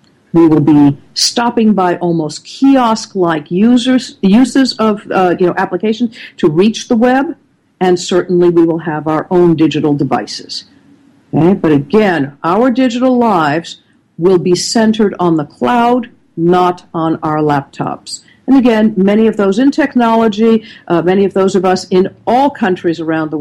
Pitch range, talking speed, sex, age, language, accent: 155-220 Hz, 155 wpm, female, 50-69, English, American